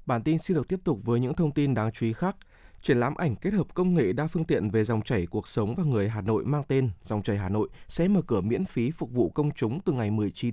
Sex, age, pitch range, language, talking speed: male, 20-39, 110-160 Hz, Vietnamese, 290 wpm